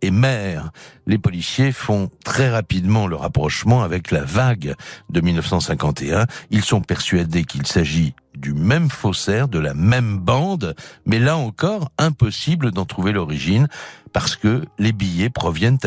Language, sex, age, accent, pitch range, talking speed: French, male, 60-79, French, 85-140 Hz, 145 wpm